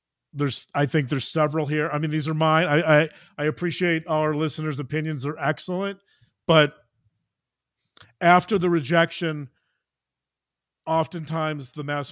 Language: English